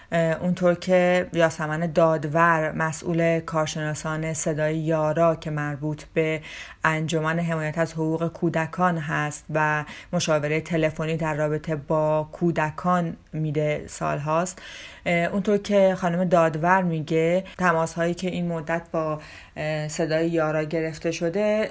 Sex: female